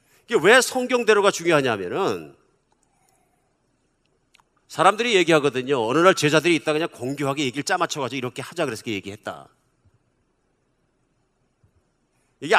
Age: 50-69